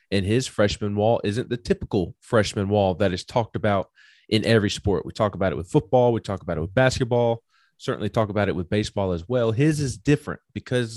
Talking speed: 220 wpm